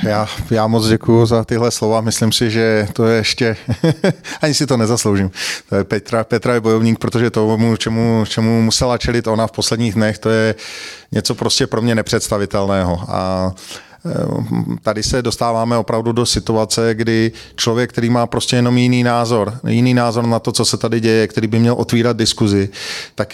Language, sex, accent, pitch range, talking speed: Czech, male, native, 105-120 Hz, 175 wpm